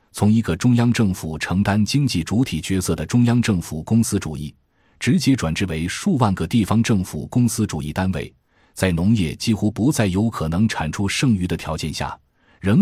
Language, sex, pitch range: Chinese, male, 80-115 Hz